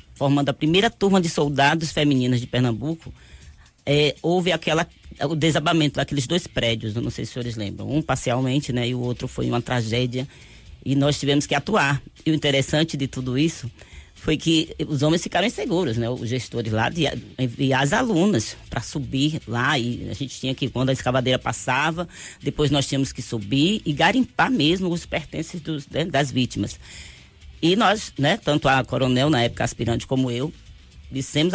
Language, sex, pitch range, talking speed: Portuguese, female, 125-160 Hz, 175 wpm